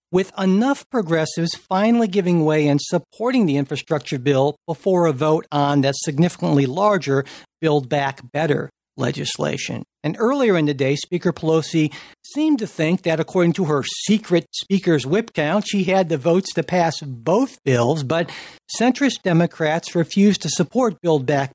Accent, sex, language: American, male, English